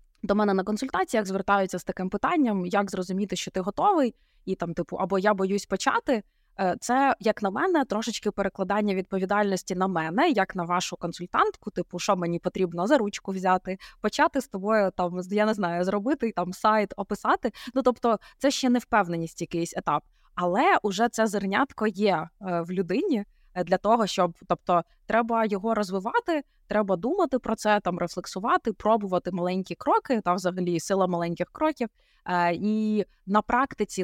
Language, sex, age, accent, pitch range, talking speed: Ukrainian, female, 20-39, native, 185-230 Hz, 160 wpm